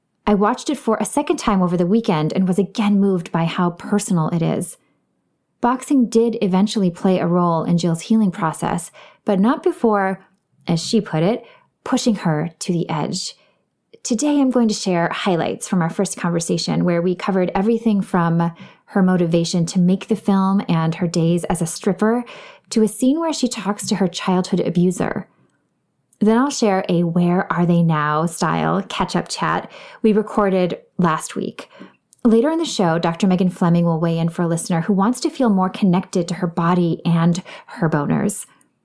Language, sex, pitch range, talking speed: English, female, 175-220 Hz, 185 wpm